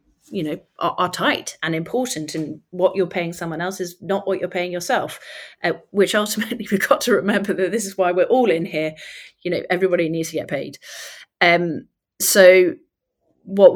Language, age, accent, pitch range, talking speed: English, 30-49, British, 160-195 Hz, 190 wpm